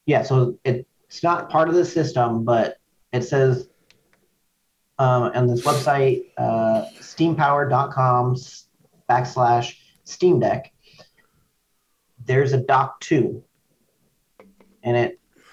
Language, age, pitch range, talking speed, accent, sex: English, 40-59, 120-140 Hz, 100 wpm, American, male